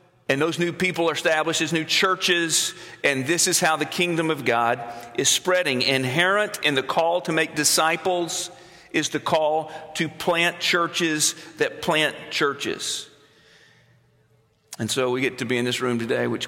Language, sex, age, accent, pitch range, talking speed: English, male, 40-59, American, 115-145 Hz, 170 wpm